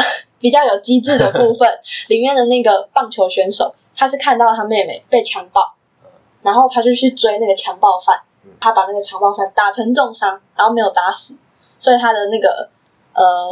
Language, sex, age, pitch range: Chinese, female, 10-29, 205-305 Hz